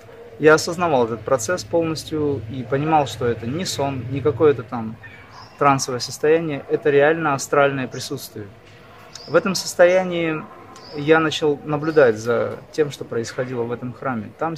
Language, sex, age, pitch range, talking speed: Russian, male, 20-39, 125-160 Hz, 140 wpm